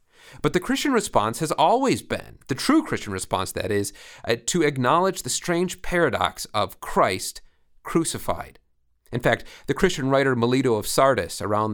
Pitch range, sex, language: 105-140 Hz, male, English